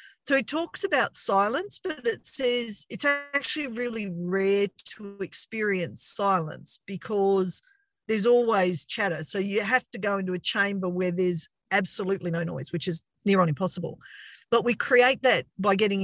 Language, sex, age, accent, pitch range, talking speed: English, female, 50-69, Australian, 185-245 Hz, 160 wpm